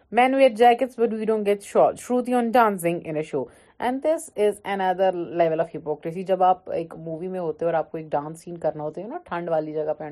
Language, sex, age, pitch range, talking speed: Urdu, female, 30-49, 165-235 Hz, 65 wpm